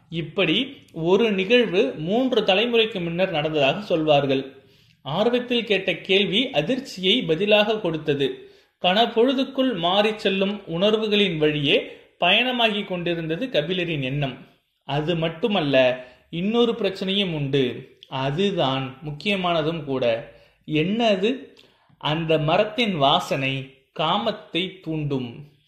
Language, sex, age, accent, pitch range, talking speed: Tamil, male, 30-49, native, 150-220 Hz, 80 wpm